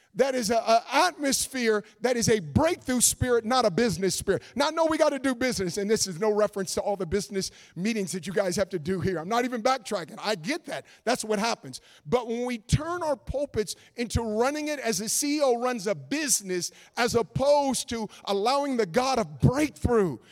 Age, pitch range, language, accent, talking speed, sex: 50-69, 175-230 Hz, English, American, 210 wpm, male